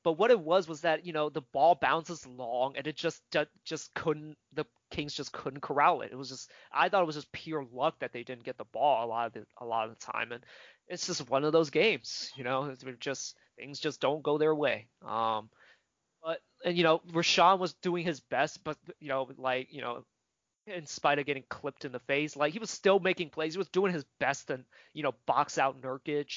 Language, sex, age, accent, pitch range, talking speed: English, male, 20-39, American, 130-165 Hz, 240 wpm